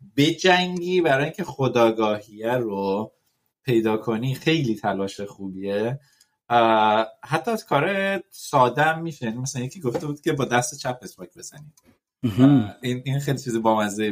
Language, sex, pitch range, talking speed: Persian, male, 110-150 Hz, 125 wpm